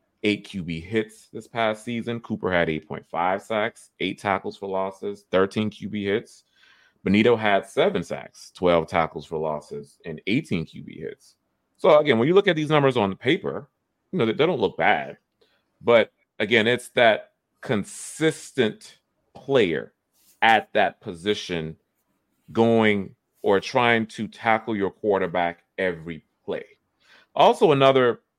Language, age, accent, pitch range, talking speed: English, 30-49, American, 90-120 Hz, 135 wpm